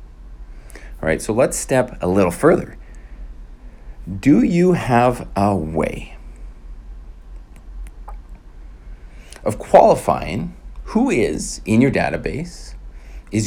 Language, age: English, 40-59